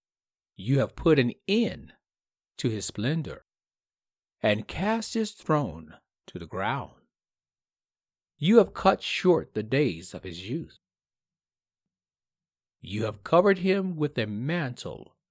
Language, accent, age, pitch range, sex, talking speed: English, American, 60-79, 115-180 Hz, male, 120 wpm